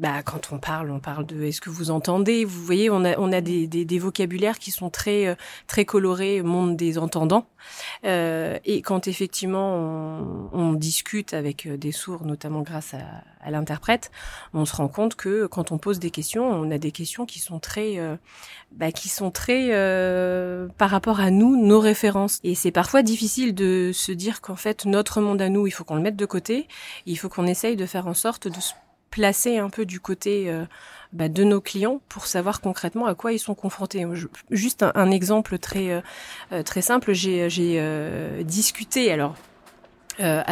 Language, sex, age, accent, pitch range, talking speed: French, female, 30-49, French, 165-205 Hz, 200 wpm